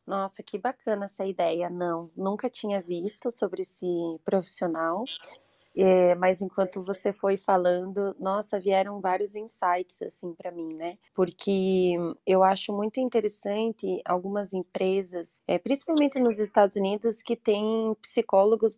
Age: 20-39